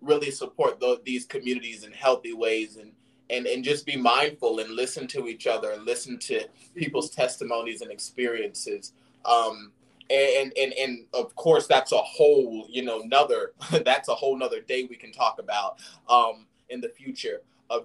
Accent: American